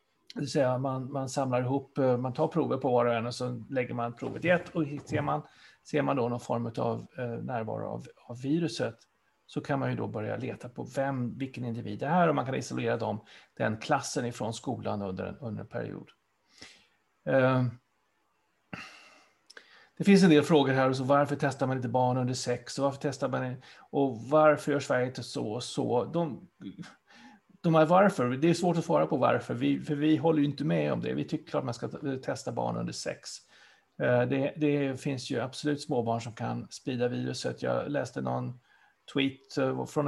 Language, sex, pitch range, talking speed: Swedish, male, 120-145 Hz, 195 wpm